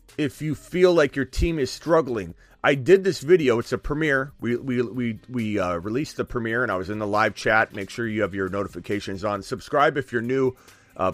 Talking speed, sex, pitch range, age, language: 225 wpm, male, 105-160 Hz, 30-49, English